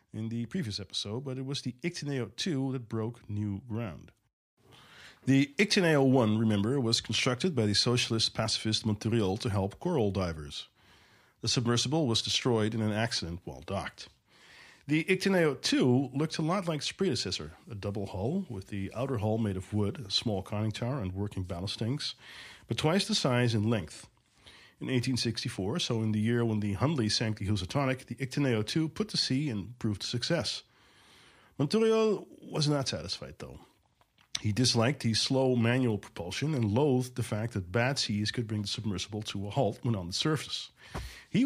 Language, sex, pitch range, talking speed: English, male, 105-130 Hz, 175 wpm